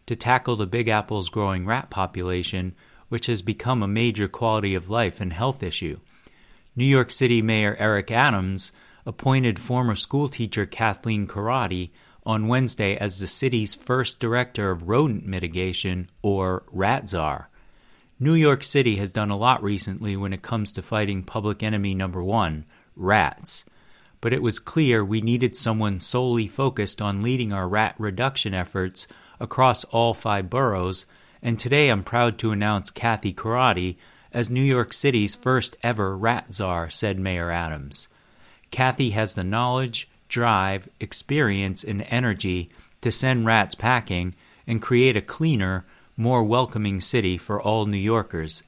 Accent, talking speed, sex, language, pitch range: American, 150 wpm, male, English, 95-120 Hz